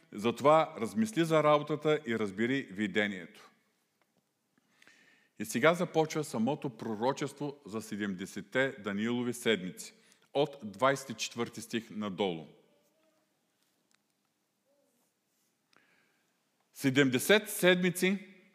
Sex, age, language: male, 50-69, Bulgarian